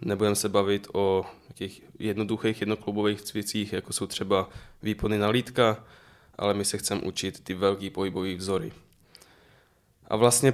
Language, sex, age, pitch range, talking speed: Czech, male, 10-29, 100-115 Hz, 135 wpm